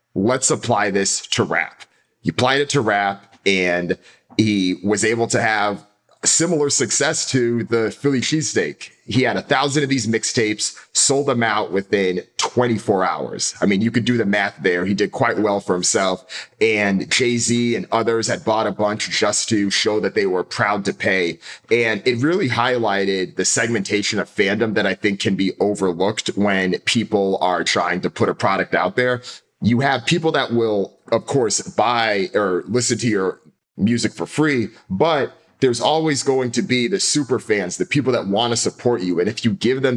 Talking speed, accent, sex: 190 wpm, American, male